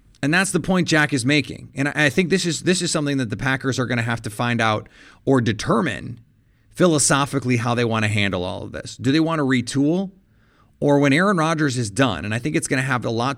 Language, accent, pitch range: English, American, 110-135 Hz